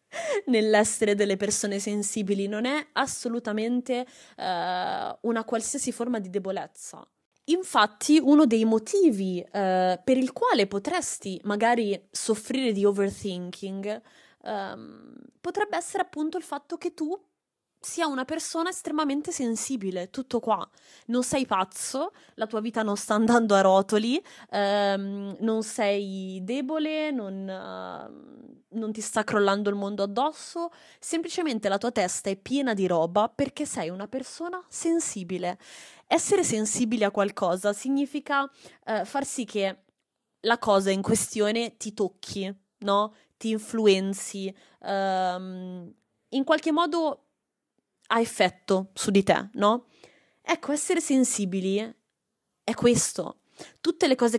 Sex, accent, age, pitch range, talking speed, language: female, native, 20-39, 200-280 Hz, 120 wpm, Italian